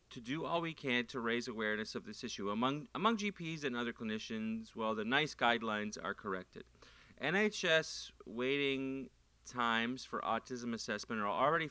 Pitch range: 110-145 Hz